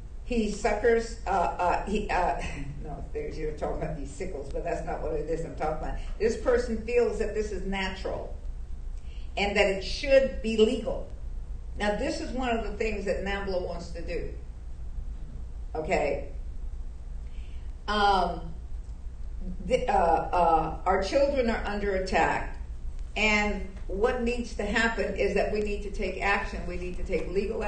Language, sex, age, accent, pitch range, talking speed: English, female, 50-69, American, 185-245 Hz, 155 wpm